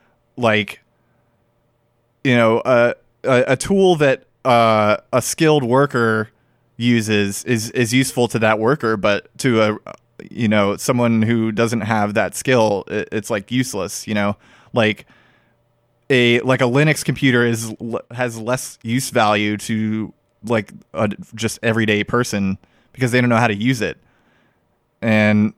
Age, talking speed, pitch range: 20-39, 145 wpm, 105-125 Hz